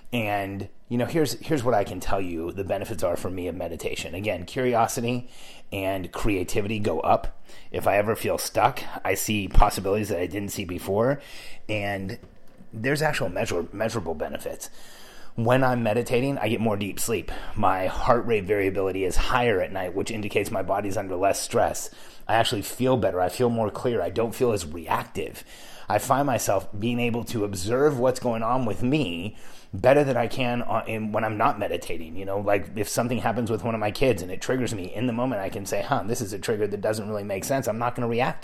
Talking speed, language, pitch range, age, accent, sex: 210 wpm, English, 105-125 Hz, 30-49, American, male